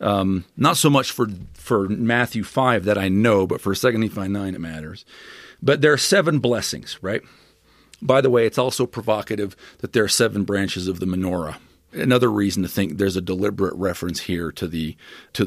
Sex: male